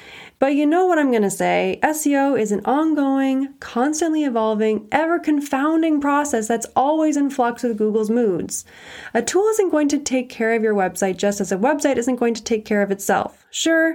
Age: 20-39